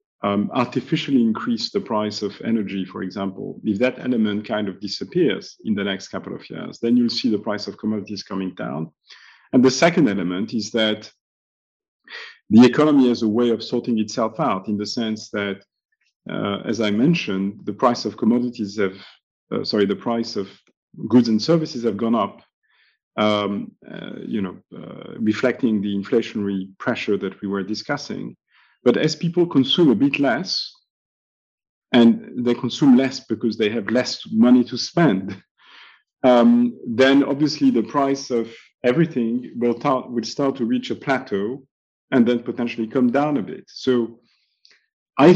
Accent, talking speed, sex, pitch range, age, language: French, 165 wpm, male, 105-125 Hz, 40-59, English